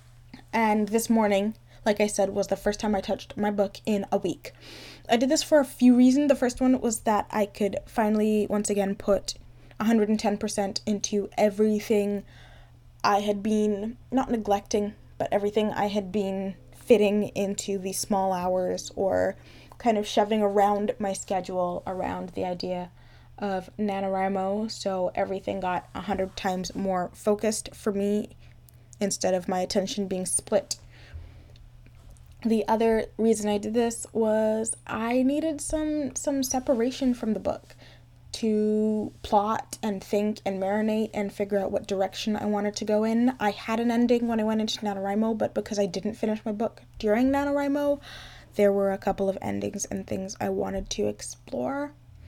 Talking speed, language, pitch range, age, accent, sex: 170 wpm, English, 195-220 Hz, 10-29, American, female